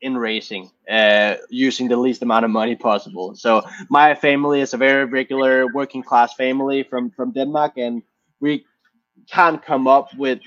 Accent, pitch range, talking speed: Danish, 120-140 Hz, 165 wpm